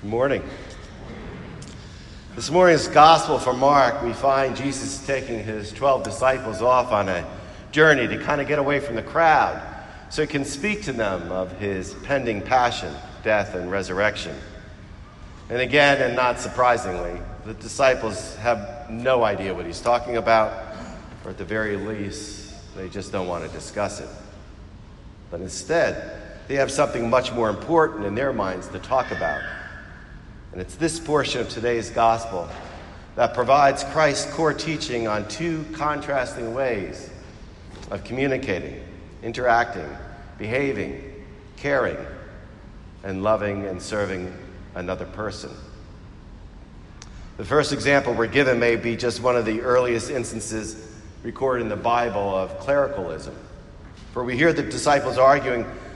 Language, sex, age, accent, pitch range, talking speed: English, male, 50-69, American, 100-135 Hz, 140 wpm